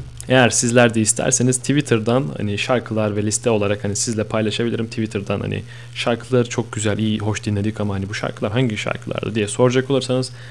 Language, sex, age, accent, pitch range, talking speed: Turkish, male, 30-49, native, 105-120 Hz, 170 wpm